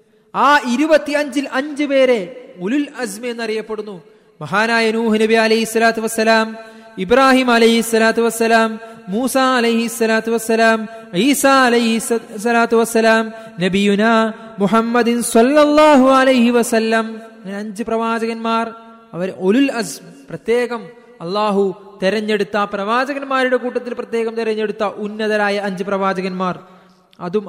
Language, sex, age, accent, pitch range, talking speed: Malayalam, male, 20-39, native, 205-230 Hz, 65 wpm